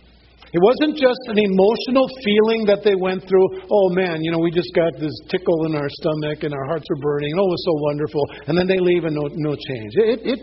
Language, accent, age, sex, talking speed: English, American, 50-69, male, 240 wpm